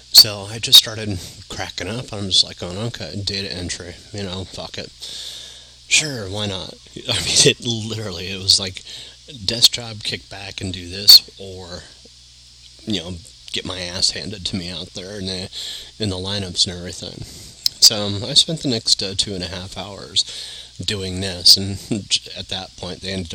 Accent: American